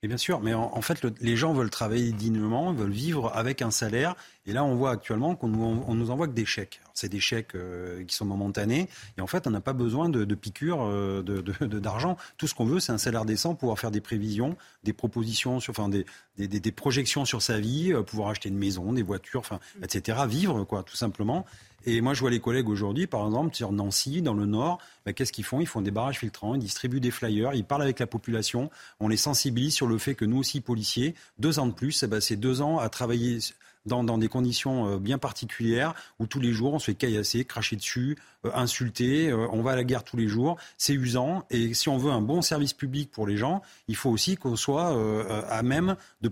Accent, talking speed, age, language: French, 245 wpm, 30-49, French